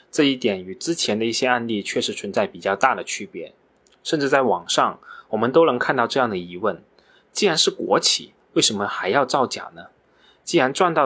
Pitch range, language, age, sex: 110-165 Hz, Chinese, 20-39, male